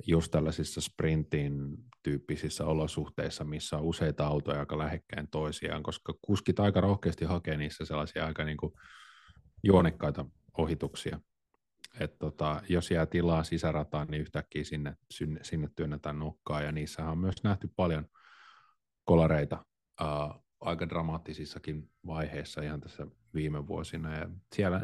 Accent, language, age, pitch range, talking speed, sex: native, Finnish, 30-49, 75-90 Hz, 130 wpm, male